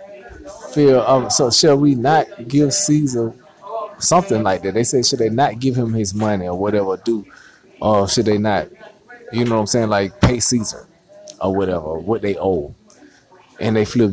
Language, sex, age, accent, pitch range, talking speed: English, male, 20-39, American, 110-170 Hz, 185 wpm